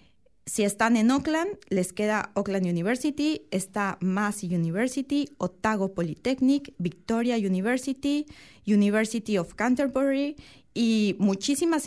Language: Portuguese